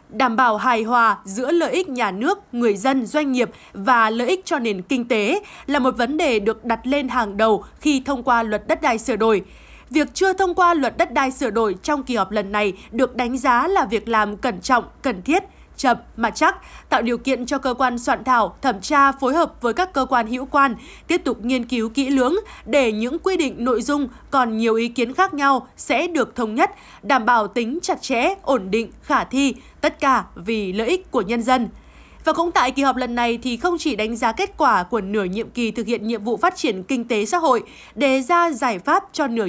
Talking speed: 235 wpm